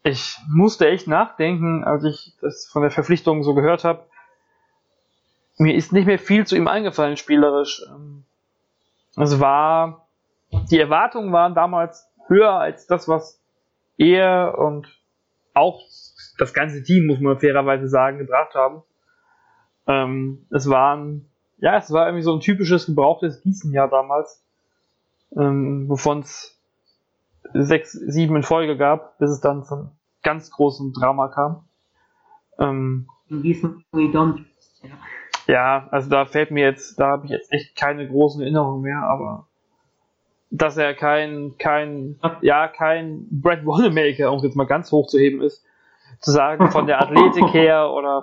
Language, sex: German, male